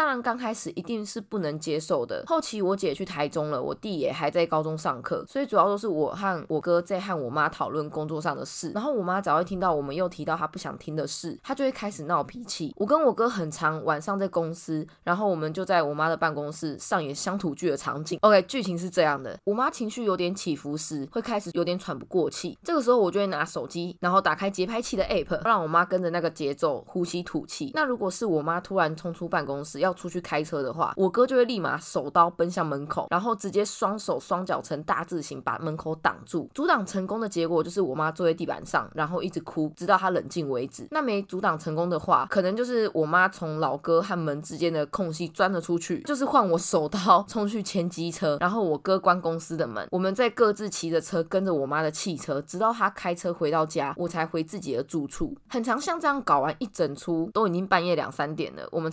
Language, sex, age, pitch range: Chinese, female, 20-39, 160-205 Hz